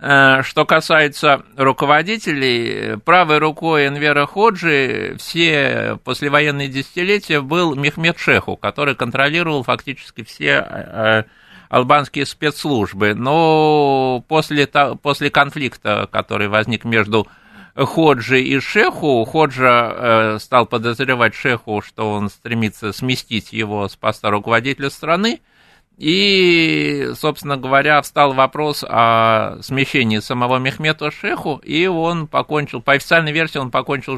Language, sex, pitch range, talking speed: Russian, male, 115-150 Hz, 105 wpm